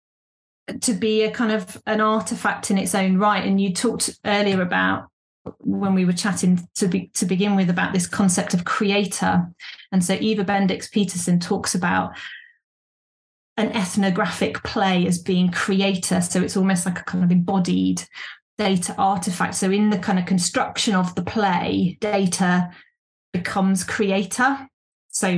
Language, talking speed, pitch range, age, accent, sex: English, 155 wpm, 185-215 Hz, 30-49, British, female